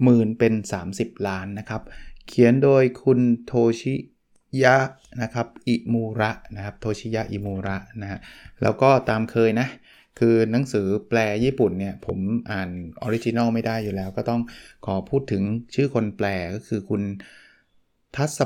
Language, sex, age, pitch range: Thai, male, 20-39, 100-120 Hz